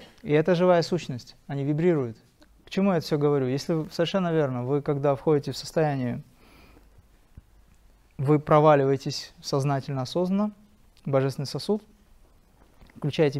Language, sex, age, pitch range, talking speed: Russian, male, 30-49, 140-180 Hz, 110 wpm